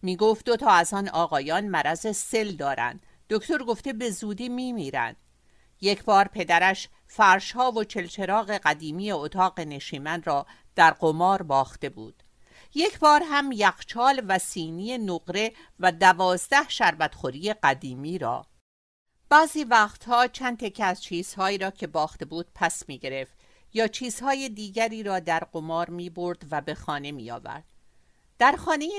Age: 50-69